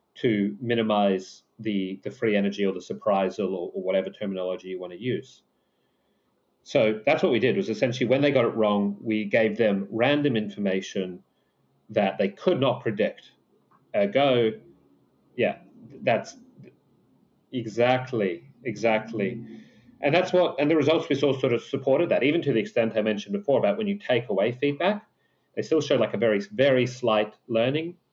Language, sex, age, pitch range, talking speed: English, male, 30-49, 105-145 Hz, 170 wpm